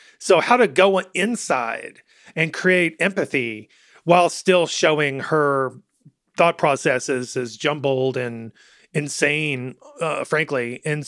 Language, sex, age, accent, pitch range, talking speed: English, male, 40-59, American, 135-180 Hz, 115 wpm